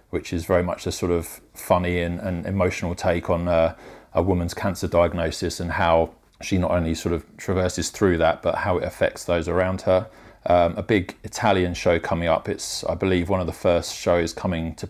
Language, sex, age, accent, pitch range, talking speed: English, male, 30-49, British, 85-95 Hz, 210 wpm